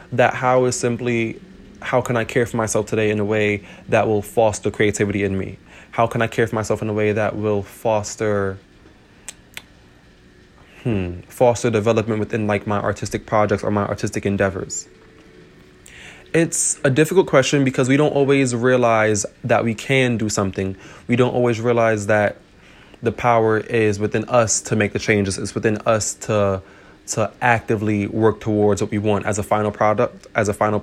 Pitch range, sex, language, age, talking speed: 105-120 Hz, male, English, 20-39, 175 wpm